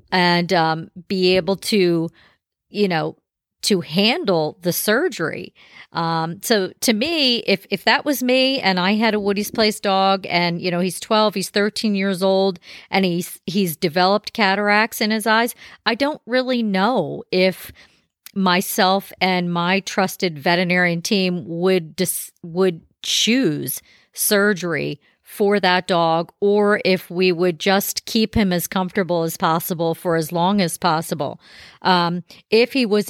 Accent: American